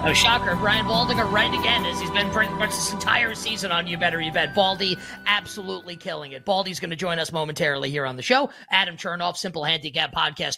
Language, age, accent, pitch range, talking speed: English, 30-49, American, 160-195 Hz, 215 wpm